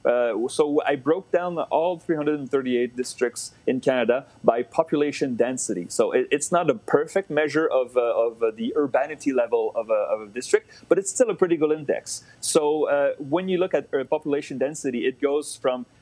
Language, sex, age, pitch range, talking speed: English, male, 30-49, 120-170 Hz, 185 wpm